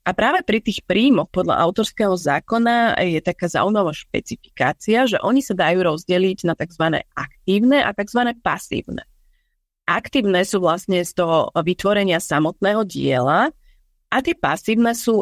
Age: 30-49